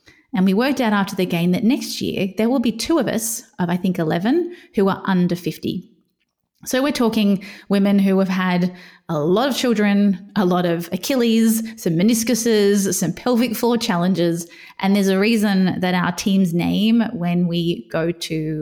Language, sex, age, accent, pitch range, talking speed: English, female, 20-39, Australian, 180-235 Hz, 185 wpm